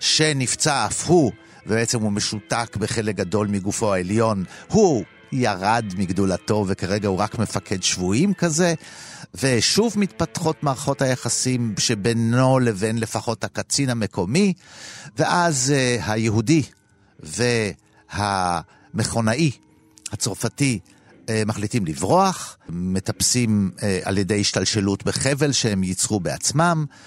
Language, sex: Hebrew, male